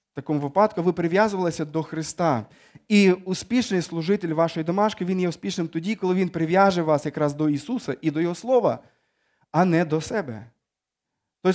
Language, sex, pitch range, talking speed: Ukrainian, male, 140-190 Hz, 160 wpm